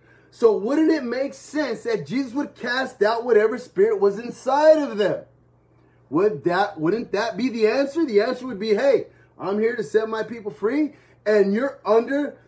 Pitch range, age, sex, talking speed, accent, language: 190-270 Hz, 30-49, male, 185 wpm, American, English